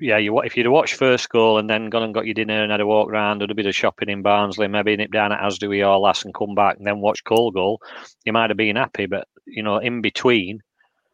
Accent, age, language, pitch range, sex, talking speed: British, 40-59, English, 105-130 Hz, male, 280 wpm